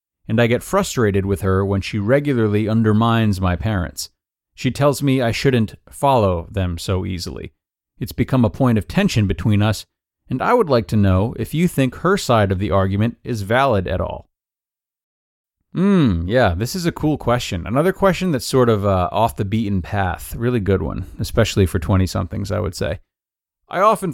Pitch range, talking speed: 95-130 Hz, 185 wpm